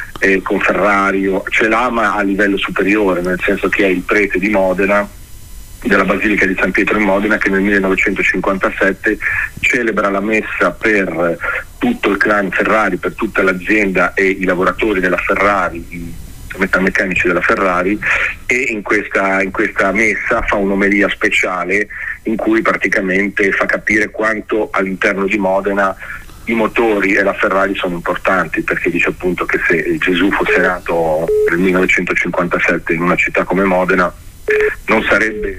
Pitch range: 95-105 Hz